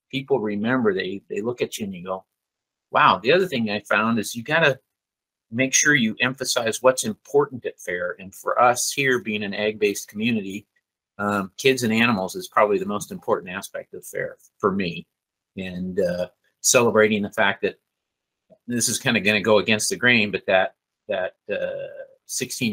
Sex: male